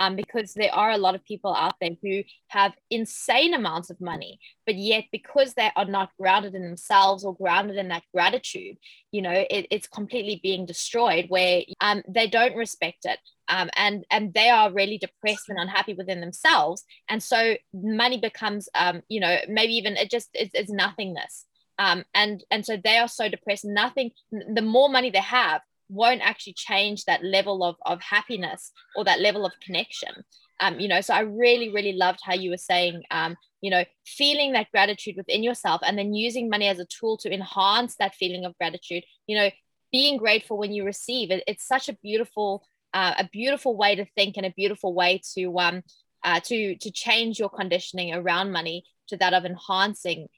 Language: English